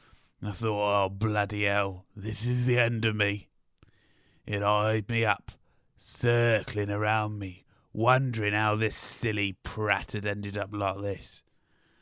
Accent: British